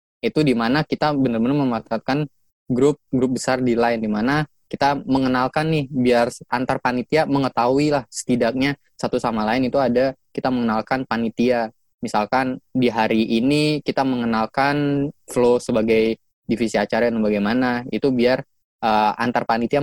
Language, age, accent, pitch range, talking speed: Indonesian, 20-39, native, 110-130 Hz, 135 wpm